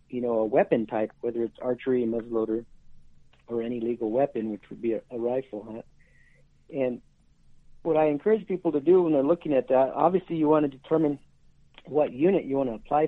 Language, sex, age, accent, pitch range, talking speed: English, male, 50-69, American, 120-155 Hz, 195 wpm